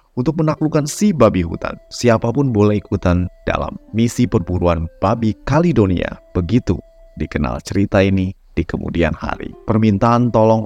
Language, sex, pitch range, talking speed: Indonesian, male, 90-120 Hz, 125 wpm